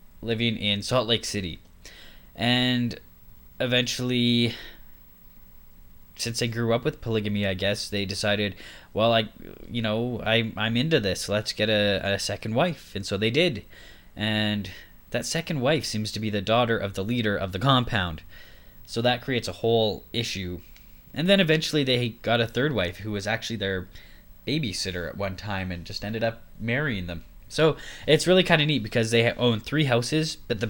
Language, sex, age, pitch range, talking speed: English, male, 10-29, 95-125 Hz, 175 wpm